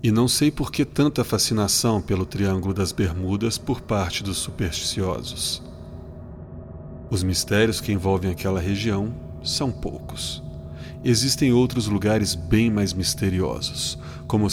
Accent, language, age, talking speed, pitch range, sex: Brazilian, Portuguese, 40-59, 125 wpm, 80-110 Hz, male